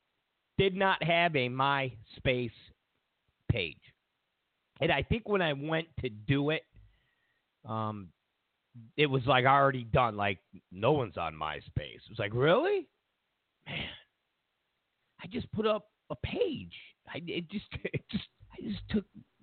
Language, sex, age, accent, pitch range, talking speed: English, male, 50-69, American, 120-195 Hz, 140 wpm